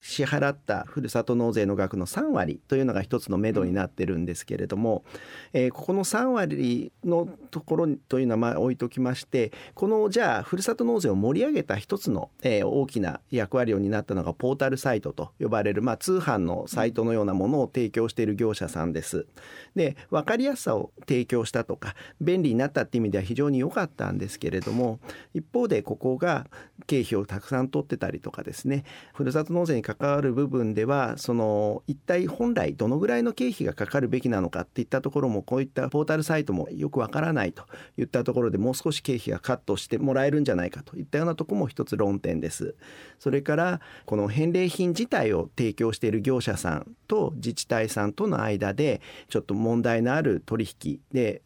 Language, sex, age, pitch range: Japanese, male, 40-59, 105-145 Hz